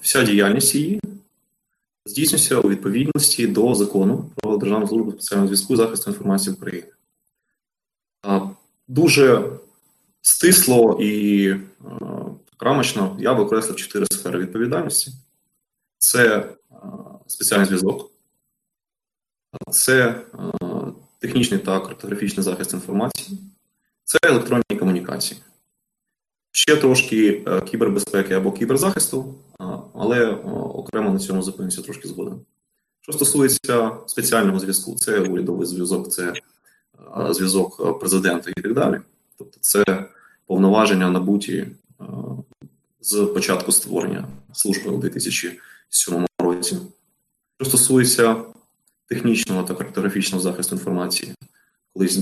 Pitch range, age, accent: 95-135 Hz, 20-39, native